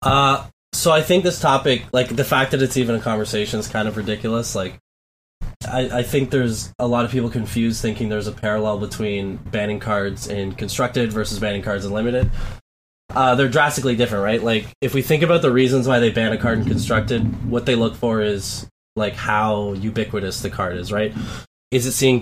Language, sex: English, male